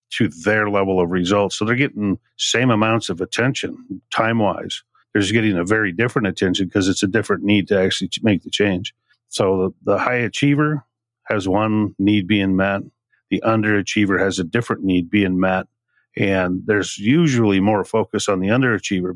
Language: English